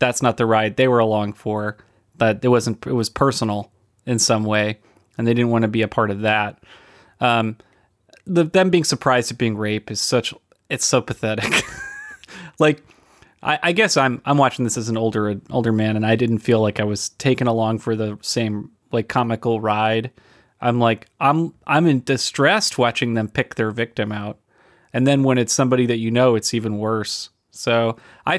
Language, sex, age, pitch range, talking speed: English, male, 30-49, 110-130 Hz, 195 wpm